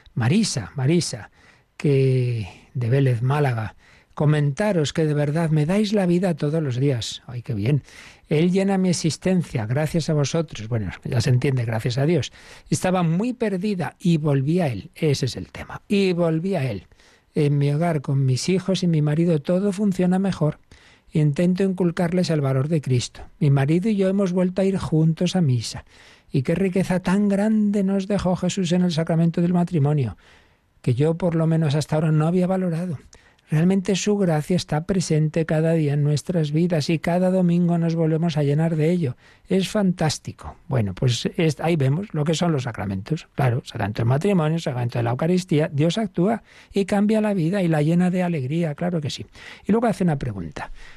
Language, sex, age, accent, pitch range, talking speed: Spanish, male, 60-79, Spanish, 135-180 Hz, 185 wpm